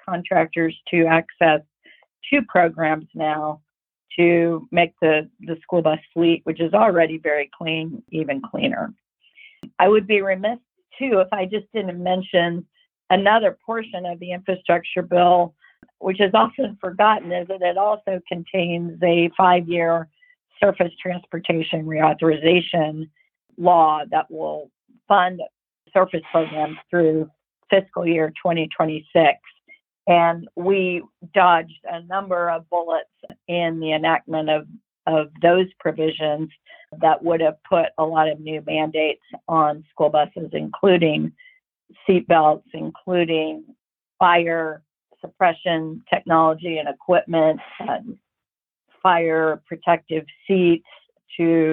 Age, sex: 50-69, female